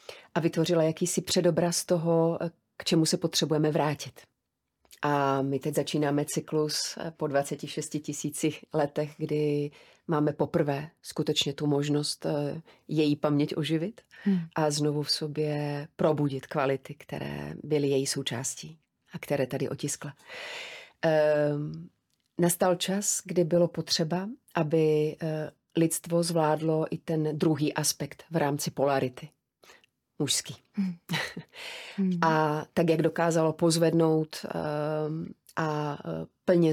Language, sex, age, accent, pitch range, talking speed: Czech, female, 30-49, native, 145-170 Hz, 105 wpm